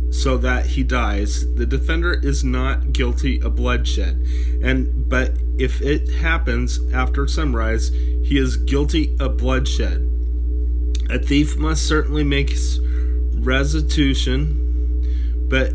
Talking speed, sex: 115 wpm, male